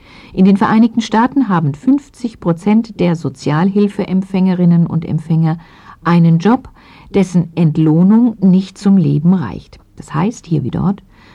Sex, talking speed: female, 120 wpm